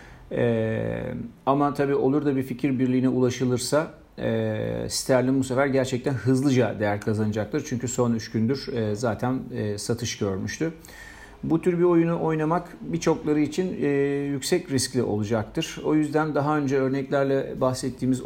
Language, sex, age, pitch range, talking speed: Turkish, male, 50-69, 115-140 Hz, 140 wpm